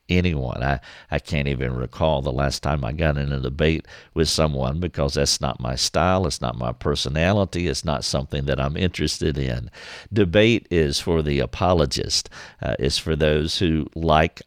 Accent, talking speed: American, 180 wpm